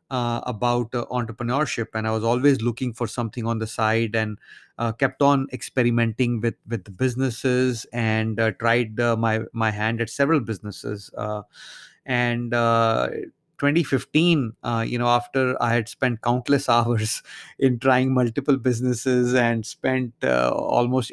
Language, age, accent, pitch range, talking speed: English, 30-49, Indian, 115-140 Hz, 150 wpm